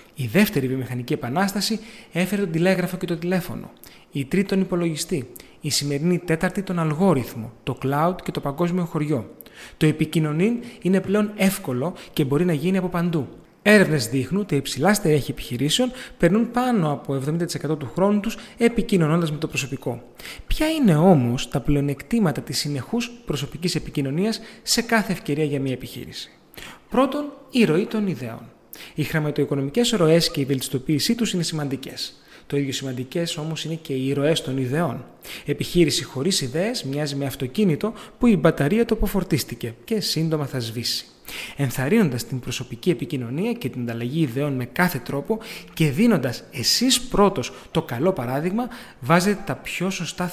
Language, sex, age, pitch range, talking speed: Greek, male, 30-49, 140-195 Hz, 155 wpm